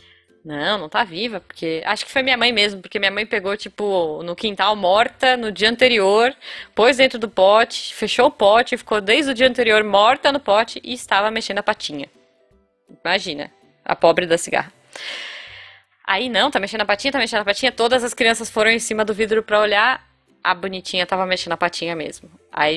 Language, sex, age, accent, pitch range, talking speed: Portuguese, female, 10-29, Brazilian, 190-240 Hz, 200 wpm